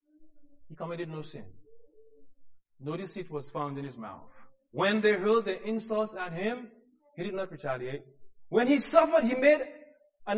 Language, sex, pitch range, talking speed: English, male, 145-225 Hz, 160 wpm